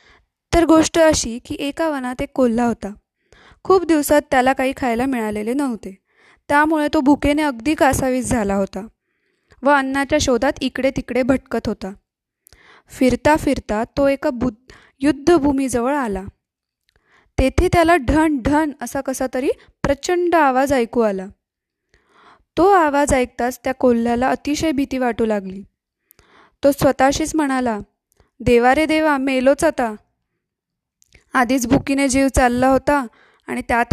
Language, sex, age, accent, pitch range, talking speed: Marathi, female, 20-39, native, 245-290 Hz, 120 wpm